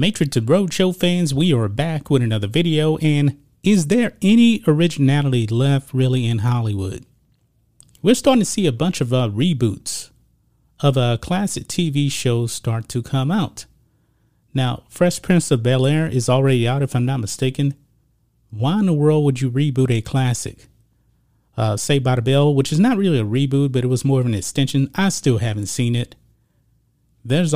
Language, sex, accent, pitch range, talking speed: English, male, American, 120-155 Hz, 180 wpm